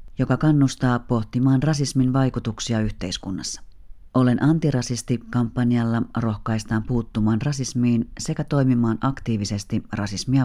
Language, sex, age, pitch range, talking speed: Finnish, female, 40-59, 110-130 Hz, 85 wpm